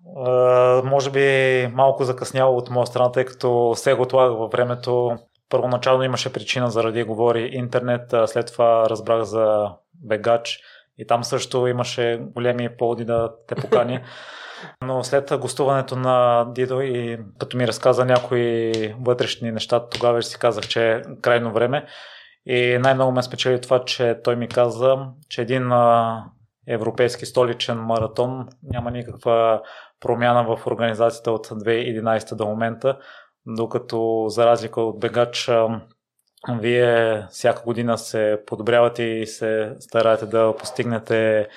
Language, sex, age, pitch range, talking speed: Bulgarian, male, 20-39, 115-125 Hz, 130 wpm